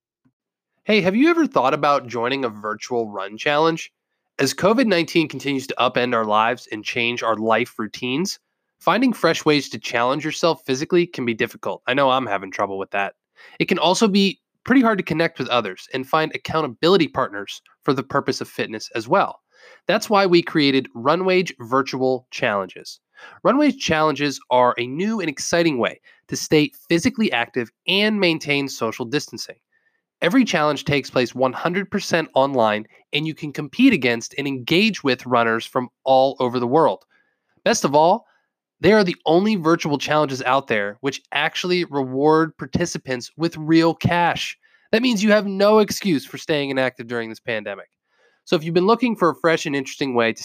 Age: 20-39